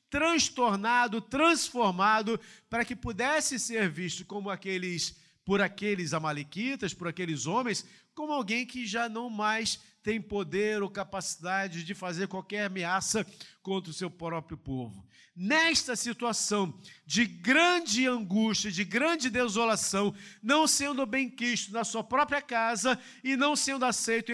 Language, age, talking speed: Portuguese, 50-69, 130 wpm